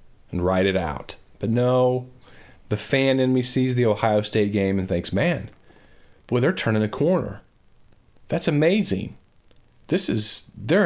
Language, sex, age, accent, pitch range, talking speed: English, male, 40-59, American, 95-120 Hz, 155 wpm